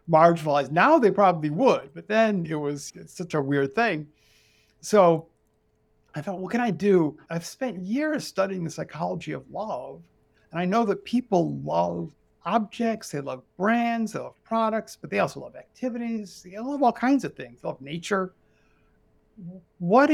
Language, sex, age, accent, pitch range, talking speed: English, male, 60-79, American, 155-210 Hz, 165 wpm